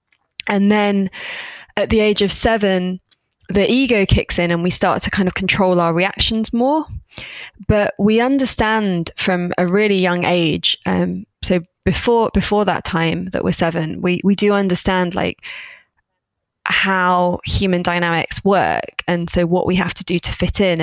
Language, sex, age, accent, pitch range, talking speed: English, female, 20-39, British, 180-210 Hz, 165 wpm